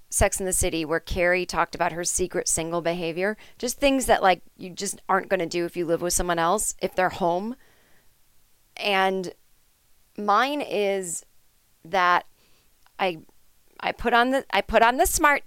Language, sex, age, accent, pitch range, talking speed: English, female, 30-49, American, 180-235 Hz, 175 wpm